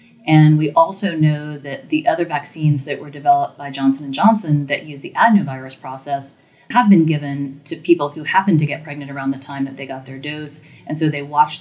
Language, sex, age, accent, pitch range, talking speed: English, female, 30-49, American, 140-155 Hz, 210 wpm